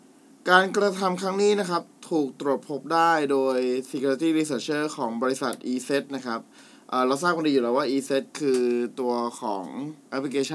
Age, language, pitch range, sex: 20-39, Thai, 125-160 Hz, male